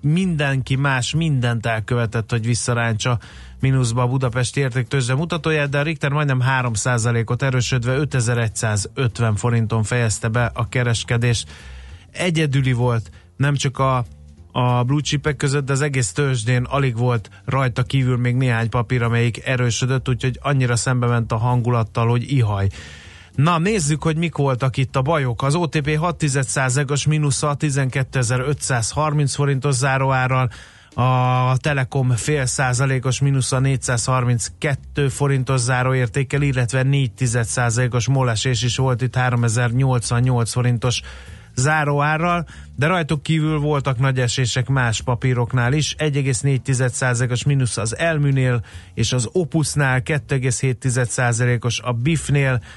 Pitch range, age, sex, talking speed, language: 120-140 Hz, 30-49, male, 115 wpm, Hungarian